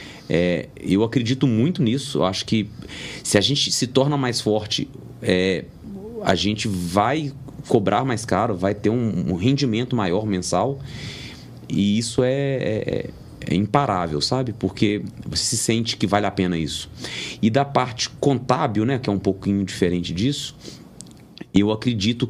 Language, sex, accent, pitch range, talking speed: Portuguese, male, Brazilian, 95-130 Hz, 150 wpm